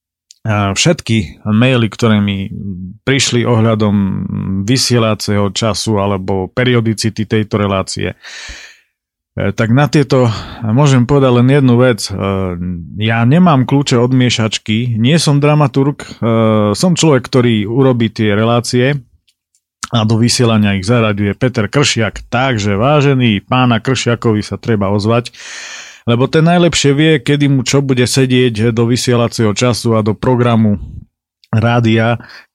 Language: Slovak